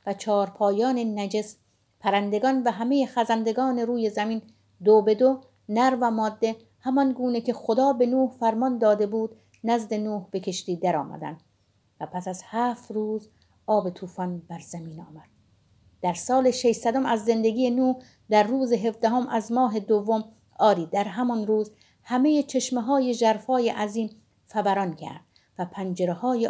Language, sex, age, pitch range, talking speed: Persian, female, 50-69, 195-240 Hz, 145 wpm